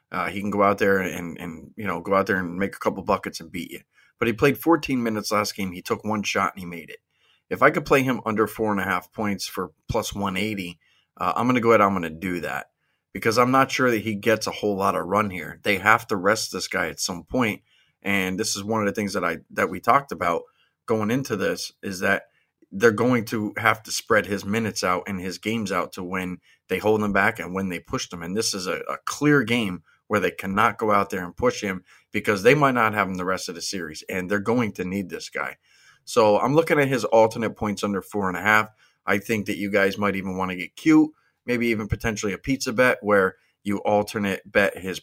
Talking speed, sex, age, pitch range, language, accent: 255 wpm, male, 30-49, 100-120 Hz, English, American